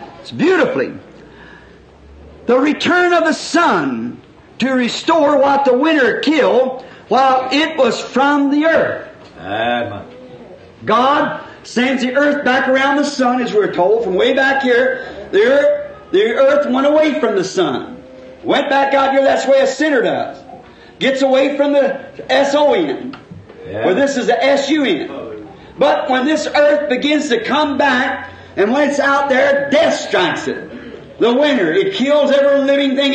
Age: 50-69